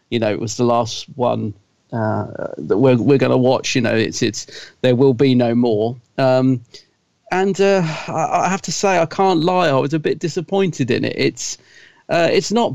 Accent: British